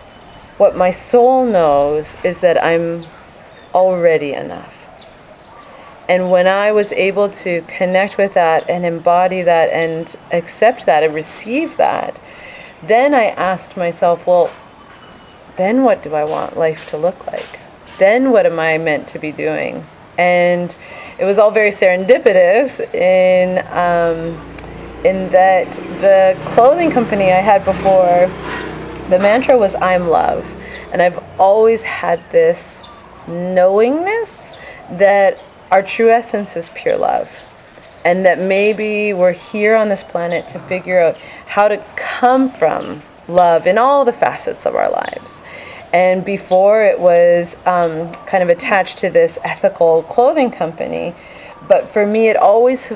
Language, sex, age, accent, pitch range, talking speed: English, female, 30-49, American, 175-220 Hz, 140 wpm